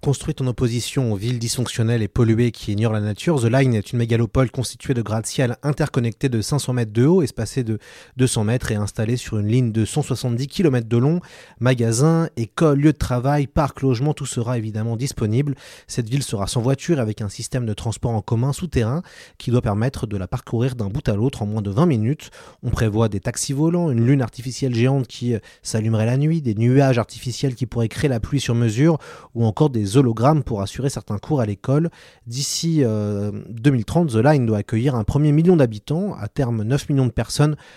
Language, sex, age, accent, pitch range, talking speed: French, male, 30-49, French, 115-140 Hz, 205 wpm